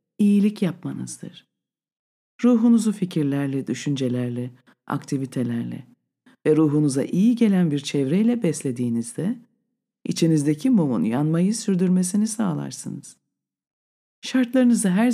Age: 50-69